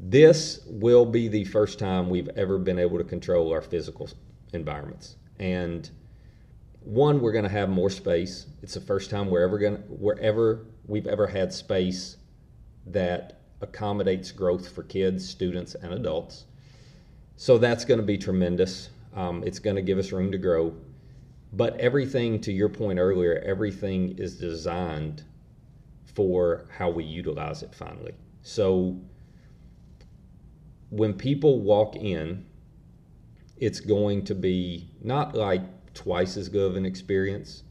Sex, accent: male, American